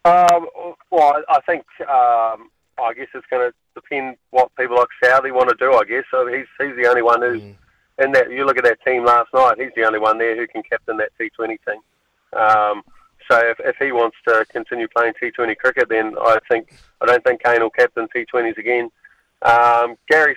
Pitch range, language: 120-145 Hz, English